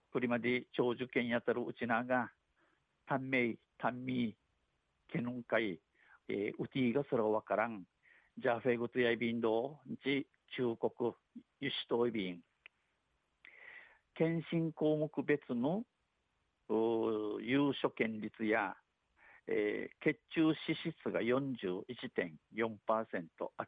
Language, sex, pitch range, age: Japanese, male, 110-145 Hz, 60-79